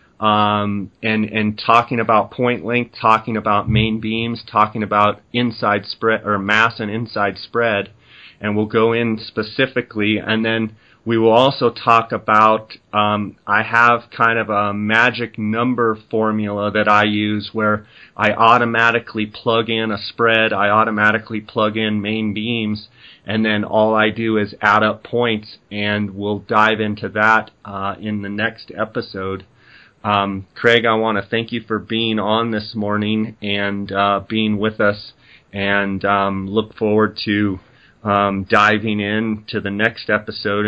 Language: English